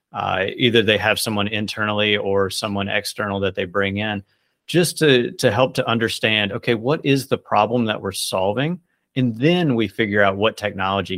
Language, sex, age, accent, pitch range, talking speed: English, male, 30-49, American, 100-120 Hz, 185 wpm